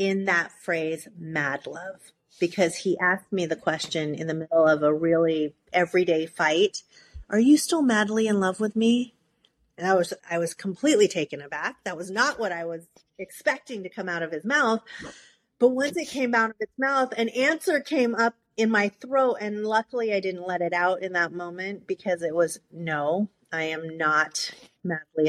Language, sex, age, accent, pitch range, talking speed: English, female, 30-49, American, 165-215 Hz, 190 wpm